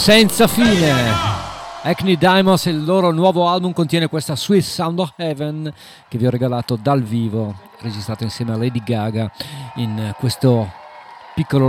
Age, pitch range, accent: 40-59, 115-145 Hz, native